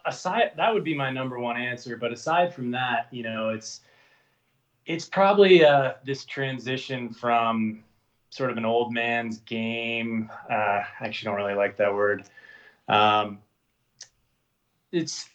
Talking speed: 145 wpm